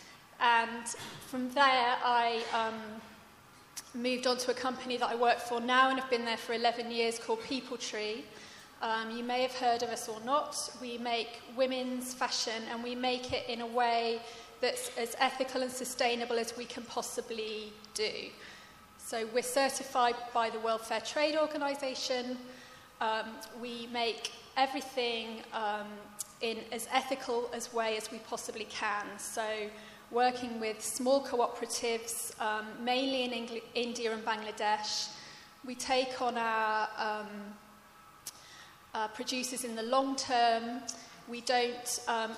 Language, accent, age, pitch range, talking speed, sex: English, British, 30-49, 225-250 Hz, 150 wpm, female